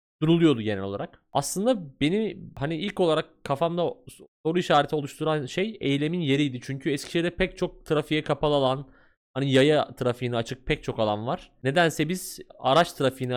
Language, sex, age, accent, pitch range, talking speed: Turkish, male, 30-49, native, 120-165 Hz, 155 wpm